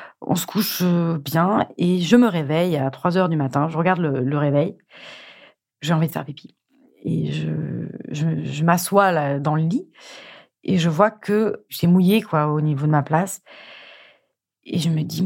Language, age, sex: French, 30-49, female